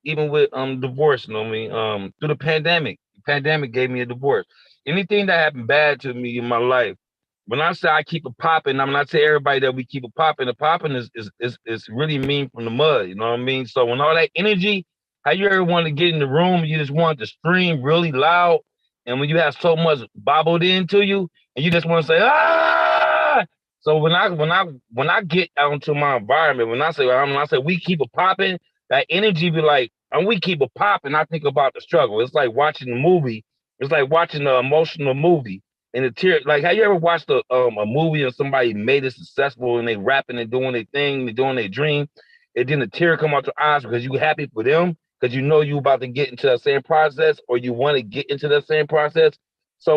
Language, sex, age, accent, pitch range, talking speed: English, male, 30-49, American, 130-170 Hz, 250 wpm